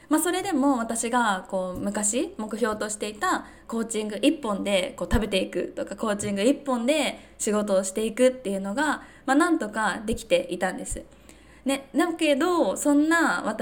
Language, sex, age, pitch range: Japanese, female, 20-39, 200-270 Hz